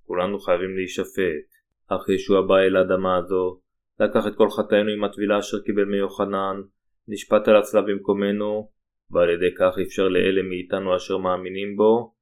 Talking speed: 150 wpm